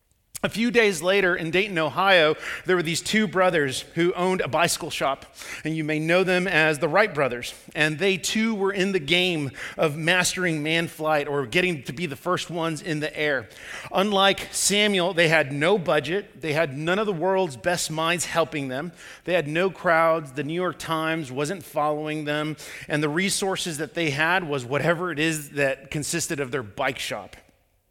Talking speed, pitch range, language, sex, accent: 195 wpm, 150-180 Hz, English, male, American